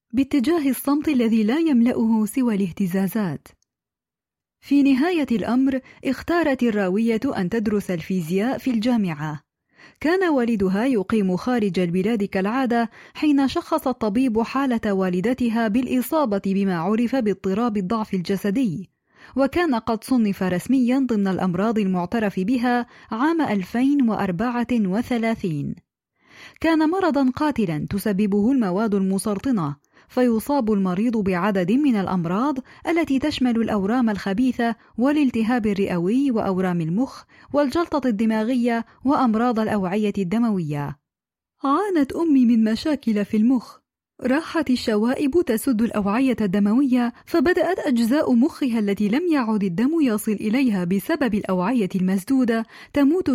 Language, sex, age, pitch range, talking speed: Arabic, female, 20-39, 205-270 Hz, 105 wpm